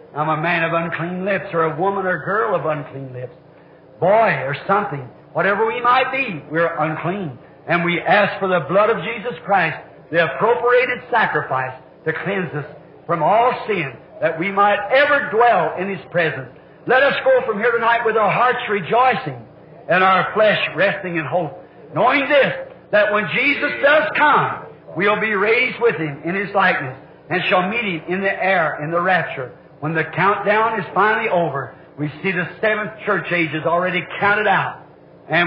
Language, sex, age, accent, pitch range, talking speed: English, male, 60-79, American, 160-210 Hz, 180 wpm